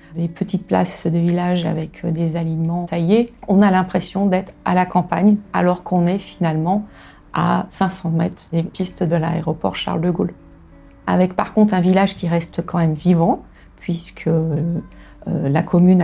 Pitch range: 165-190 Hz